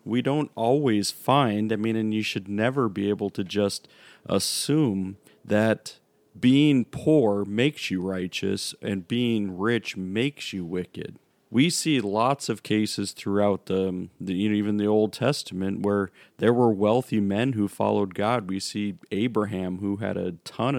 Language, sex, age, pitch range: English, male, 40-59, 100-120 Hz